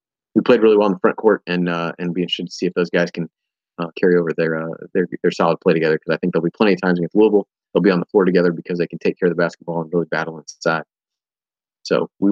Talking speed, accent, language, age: 285 wpm, American, English, 30-49